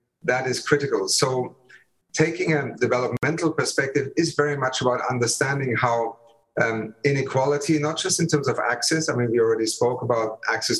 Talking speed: 160 wpm